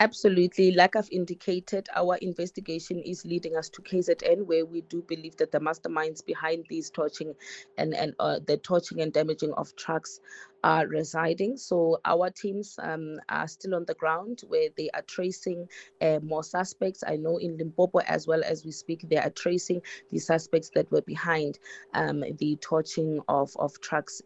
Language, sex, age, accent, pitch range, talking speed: English, female, 20-39, South African, 155-185 Hz, 175 wpm